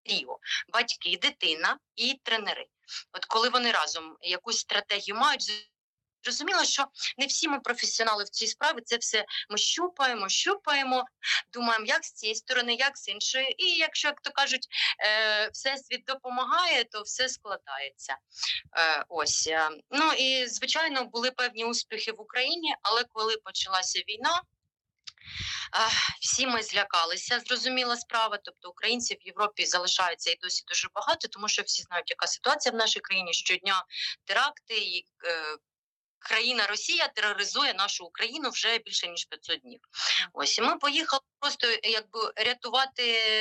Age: 30-49